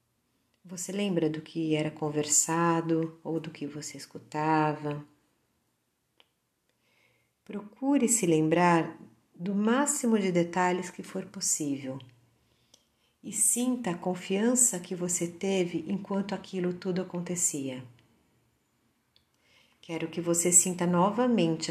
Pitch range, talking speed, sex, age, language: 145-195 Hz, 100 wpm, female, 50-69, Portuguese